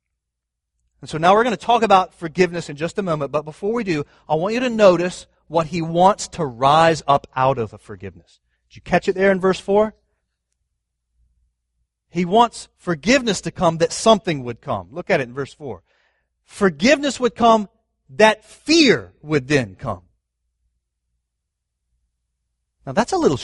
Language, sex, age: English, male, 30-49